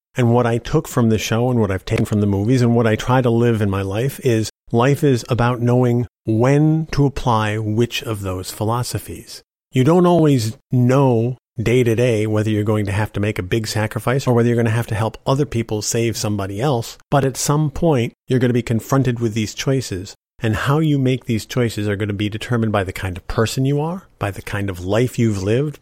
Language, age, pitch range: English, 40-59, 105-125 Hz